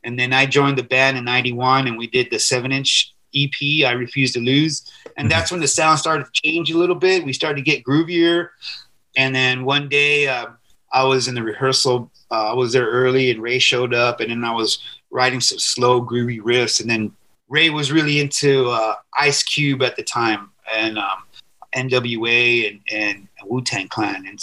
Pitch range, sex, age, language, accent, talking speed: 120-145 Hz, male, 30-49, English, American, 205 wpm